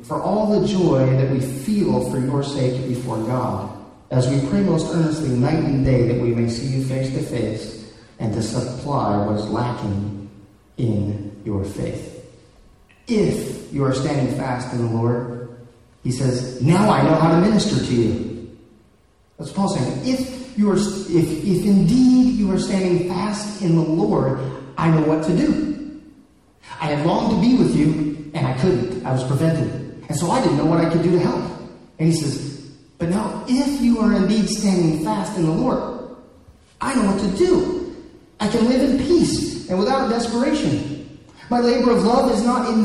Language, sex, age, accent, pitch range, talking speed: English, male, 40-59, American, 125-195 Hz, 190 wpm